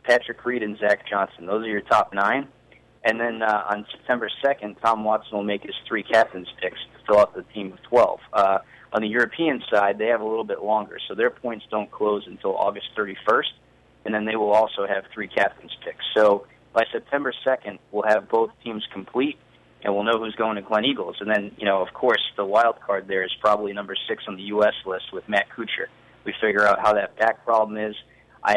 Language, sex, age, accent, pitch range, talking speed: English, male, 30-49, American, 100-120 Hz, 225 wpm